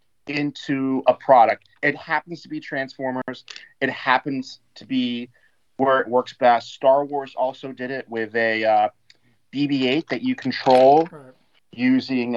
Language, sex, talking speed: English, male, 140 wpm